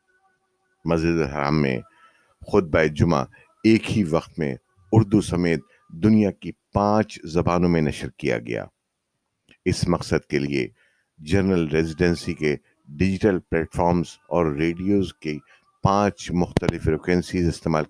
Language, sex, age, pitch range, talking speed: Urdu, male, 50-69, 80-105 Hz, 120 wpm